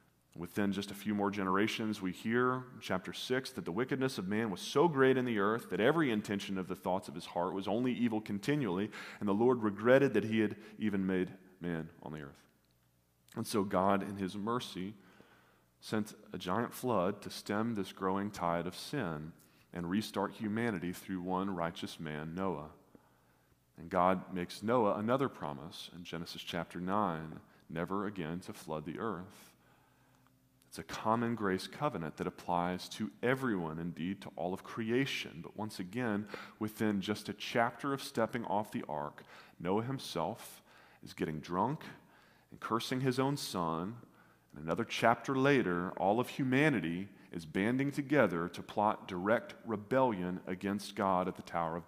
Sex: male